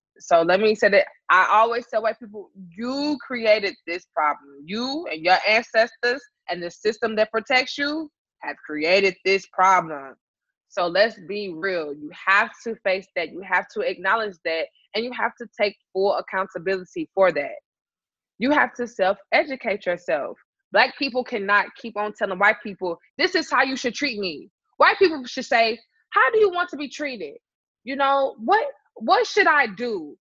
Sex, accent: female, American